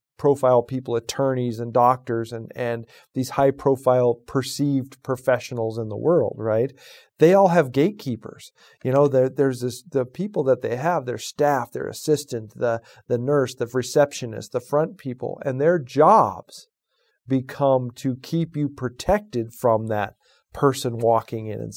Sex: male